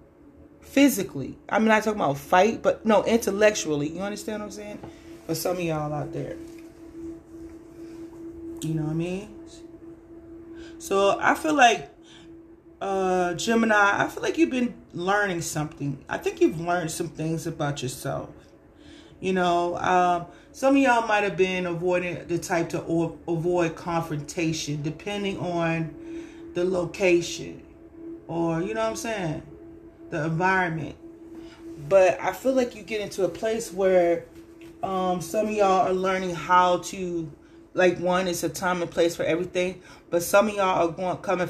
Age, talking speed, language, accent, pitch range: 30-49, 160 wpm, English, American, 170-245 Hz